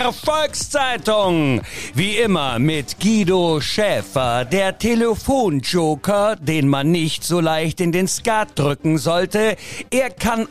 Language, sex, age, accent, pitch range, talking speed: German, male, 50-69, German, 160-225 Hz, 115 wpm